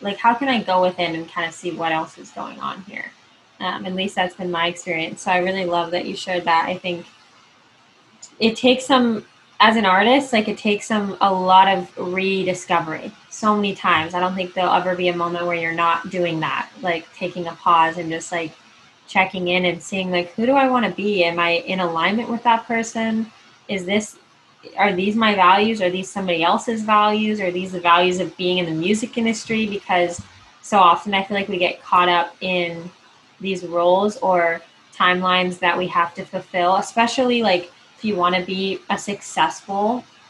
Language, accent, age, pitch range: English, American, 10-29, 175-210 Hz